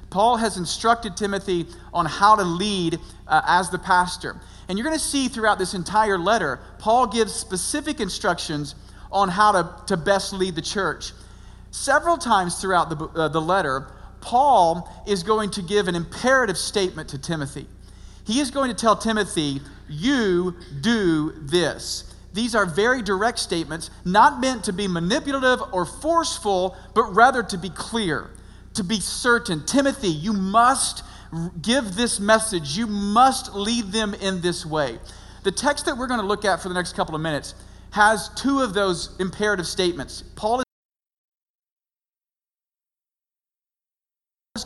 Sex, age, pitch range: male, 40-59, 170-225 Hz